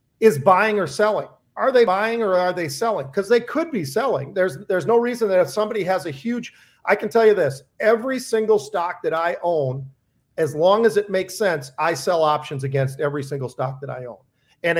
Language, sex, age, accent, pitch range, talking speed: English, male, 40-59, American, 145-200 Hz, 220 wpm